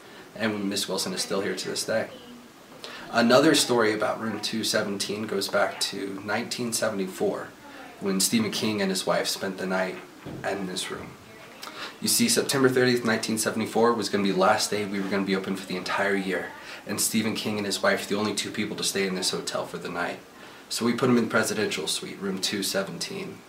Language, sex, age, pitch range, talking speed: English, male, 20-39, 100-115 Hz, 205 wpm